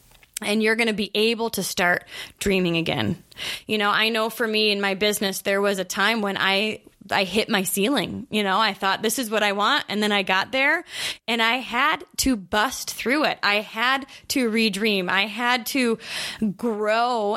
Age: 20-39